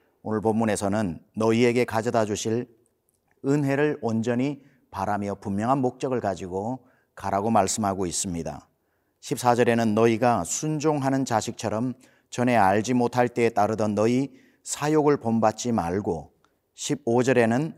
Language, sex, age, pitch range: Korean, male, 40-59, 100-130 Hz